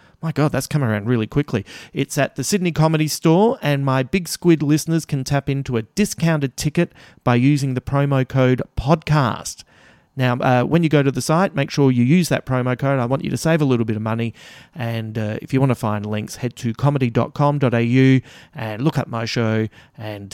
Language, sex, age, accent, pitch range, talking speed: English, male, 30-49, Australian, 115-145 Hz, 210 wpm